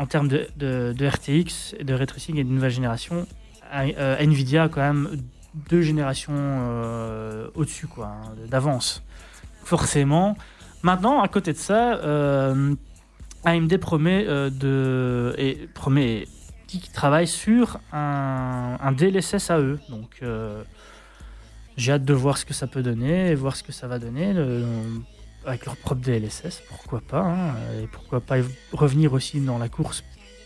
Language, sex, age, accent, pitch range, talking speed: French, male, 20-39, French, 130-170 Hz, 150 wpm